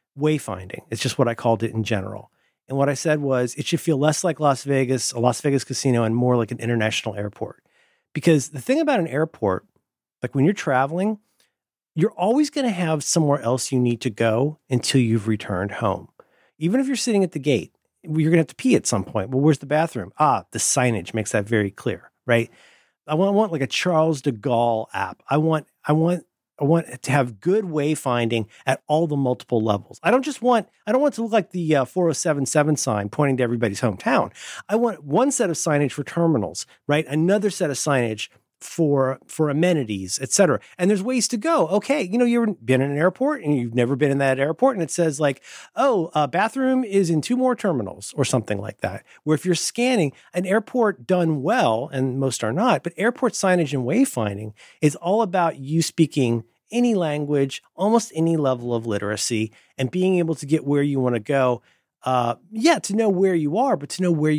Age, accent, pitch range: 40-59, American, 125-180 Hz